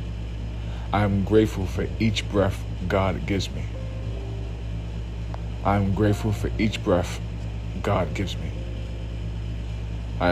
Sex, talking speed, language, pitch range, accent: male, 110 wpm, English, 90-105 Hz, American